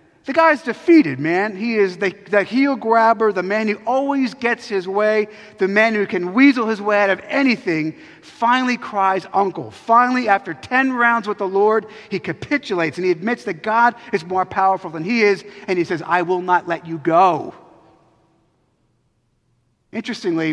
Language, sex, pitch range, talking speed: English, male, 165-235 Hz, 175 wpm